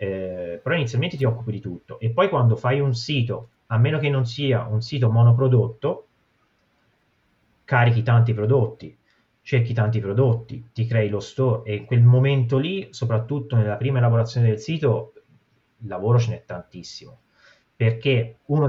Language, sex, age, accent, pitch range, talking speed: Italian, male, 30-49, native, 110-135 Hz, 155 wpm